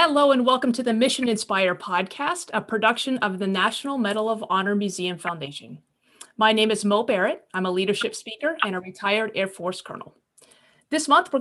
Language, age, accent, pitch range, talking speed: English, 30-49, American, 185-230 Hz, 190 wpm